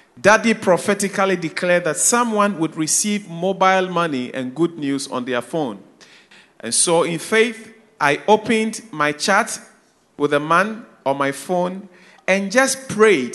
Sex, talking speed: male, 145 wpm